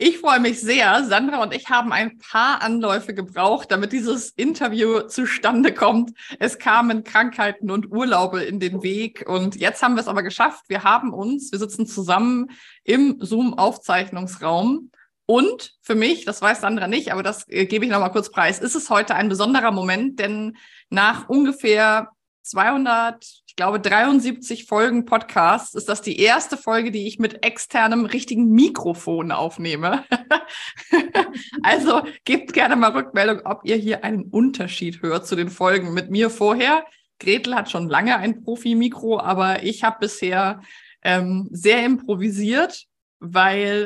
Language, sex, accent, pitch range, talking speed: German, female, German, 195-240 Hz, 155 wpm